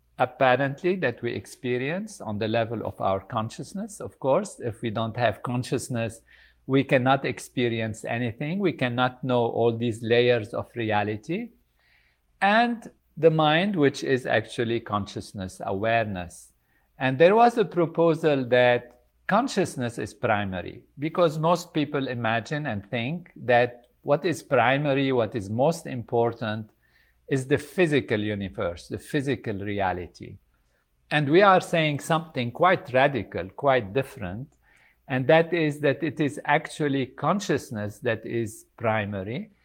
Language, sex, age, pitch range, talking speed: English, male, 50-69, 115-155 Hz, 130 wpm